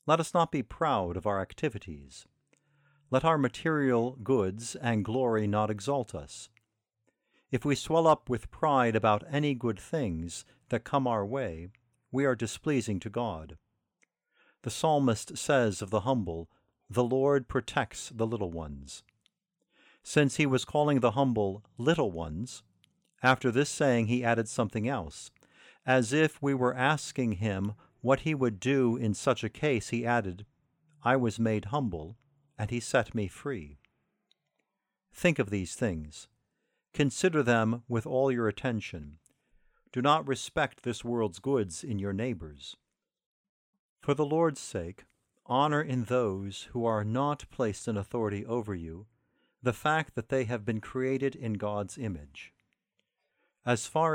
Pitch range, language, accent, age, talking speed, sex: 105-140 Hz, English, American, 50-69, 150 wpm, male